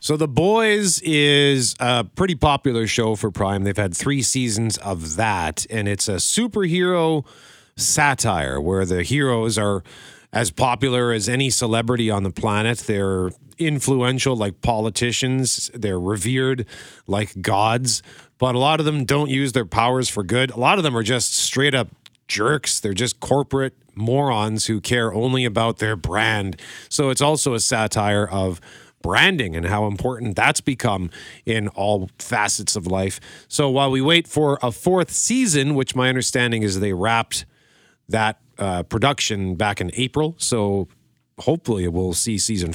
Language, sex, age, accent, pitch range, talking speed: English, male, 40-59, American, 100-135 Hz, 155 wpm